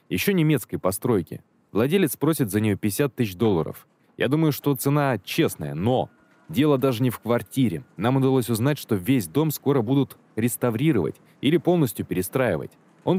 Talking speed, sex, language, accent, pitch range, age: 155 wpm, male, Russian, native, 100-135 Hz, 20-39